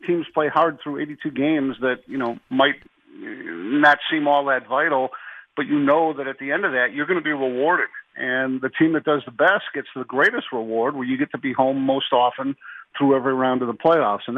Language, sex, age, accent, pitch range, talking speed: English, male, 50-69, American, 130-170 Hz, 230 wpm